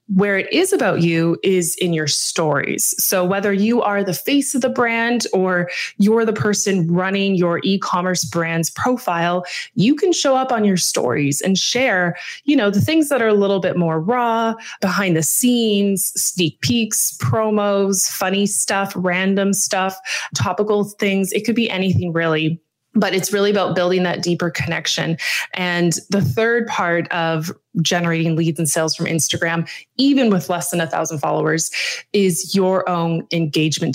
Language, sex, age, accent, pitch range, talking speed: English, female, 20-39, American, 170-215 Hz, 165 wpm